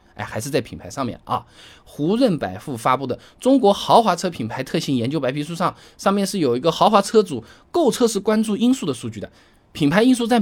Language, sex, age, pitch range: Chinese, male, 20-39, 120-195 Hz